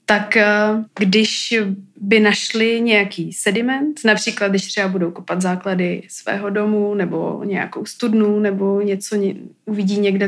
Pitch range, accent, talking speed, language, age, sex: 195-215 Hz, native, 125 wpm, Czech, 20-39, female